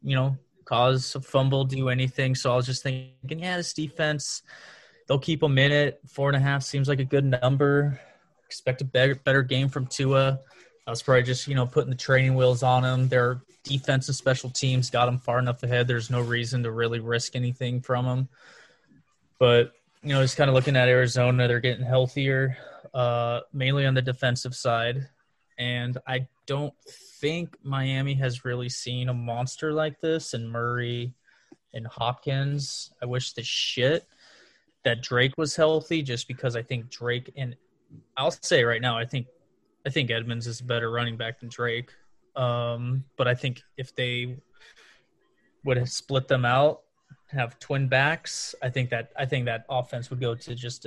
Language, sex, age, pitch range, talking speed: English, male, 20-39, 125-135 Hz, 180 wpm